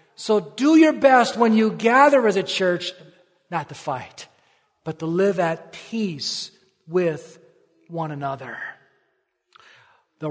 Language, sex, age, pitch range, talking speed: English, male, 40-59, 165-215 Hz, 130 wpm